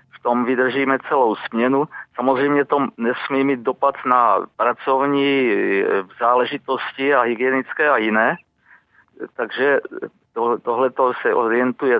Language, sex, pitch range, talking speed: Czech, male, 125-140 Hz, 105 wpm